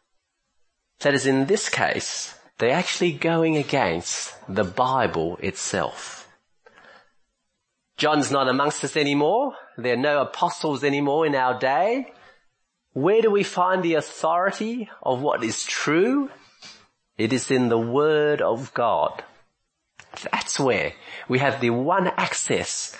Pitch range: 130-170 Hz